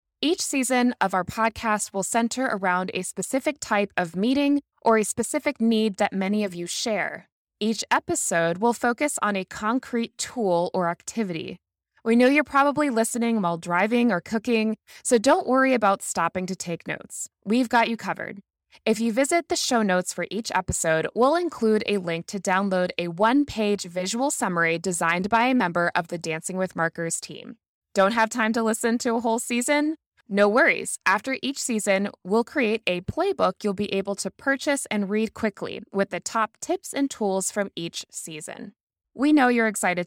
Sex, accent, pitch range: female, American, 185-245 Hz